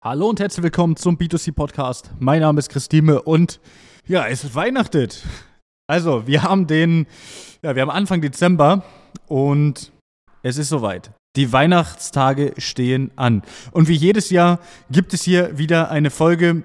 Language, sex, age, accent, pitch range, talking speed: German, male, 20-39, German, 130-160 Hz, 150 wpm